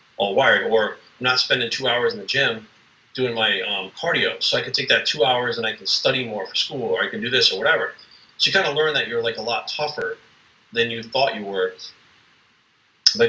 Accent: American